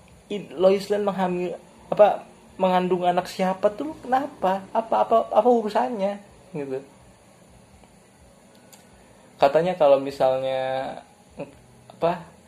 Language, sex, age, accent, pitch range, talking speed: Indonesian, male, 20-39, native, 140-190 Hz, 75 wpm